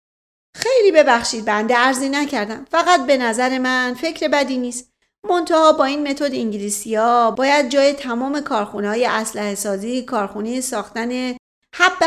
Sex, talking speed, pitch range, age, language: female, 140 wpm, 220-310 Hz, 40-59, Persian